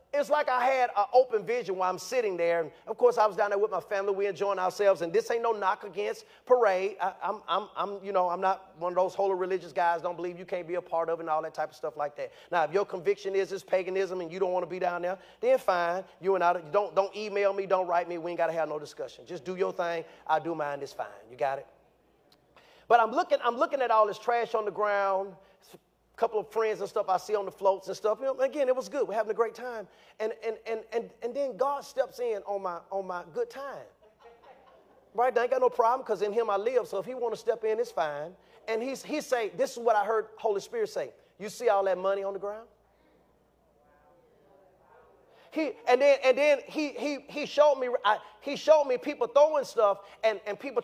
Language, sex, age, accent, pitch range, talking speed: English, male, 30-49, American, 190-260 Hz, 255 wpm